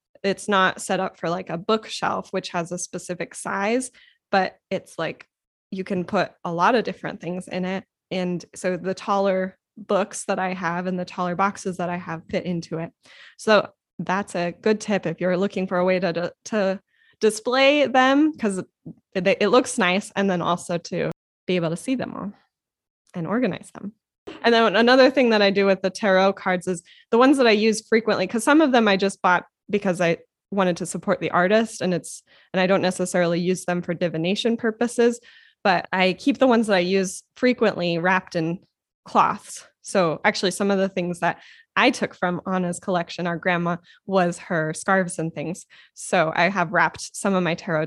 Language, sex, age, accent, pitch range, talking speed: English, female, 10-29, American, 175-210 Hz, 200 wpm